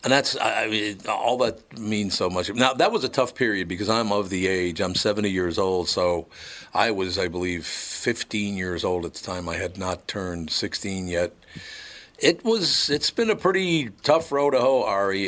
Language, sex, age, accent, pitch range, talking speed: English, male, 50-69, American, 90-115 Hz, 205 wpm